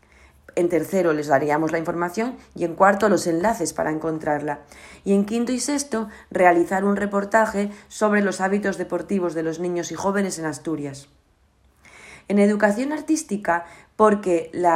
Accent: Spanish